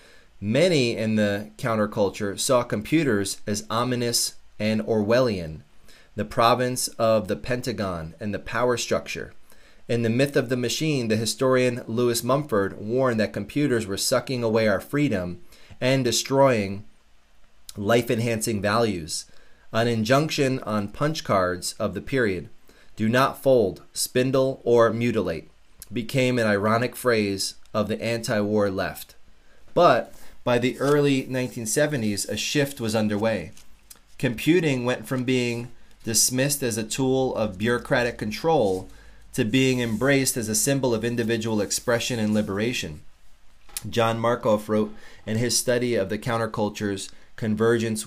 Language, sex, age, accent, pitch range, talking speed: English, male, 30-49, American, 105-125 Hz, 130 wpm